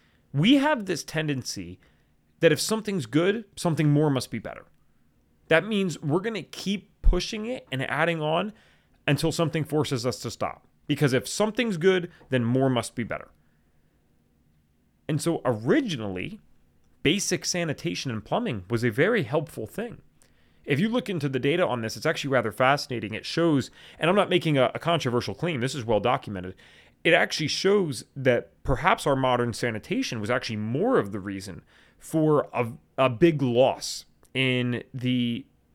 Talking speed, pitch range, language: 160 wpm, 115-175 Hz, English